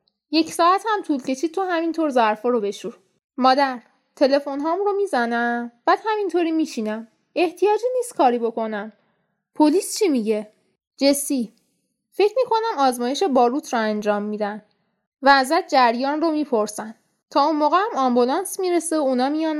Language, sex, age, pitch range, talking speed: Persian, female, 10-29, 225-300 Hz, 145 wpm